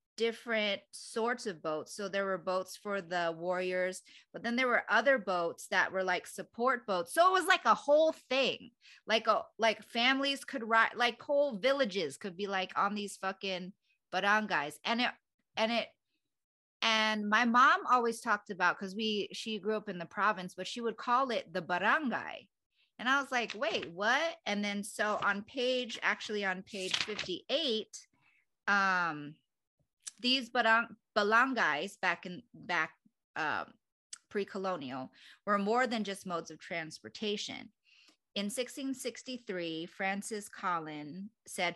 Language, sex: English, female